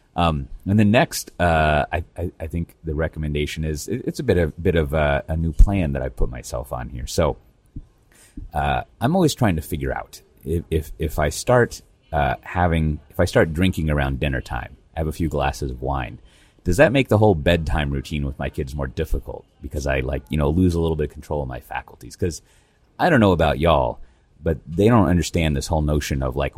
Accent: American